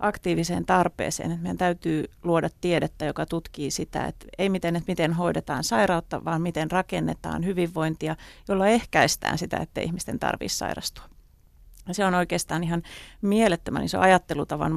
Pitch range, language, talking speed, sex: 145-190 Hz, Finnish, 135 wpm, female